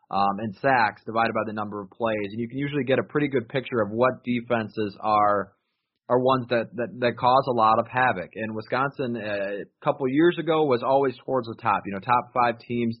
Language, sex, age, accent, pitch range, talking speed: English, male, 20-39, American, 110-125 Hz, 220 wpm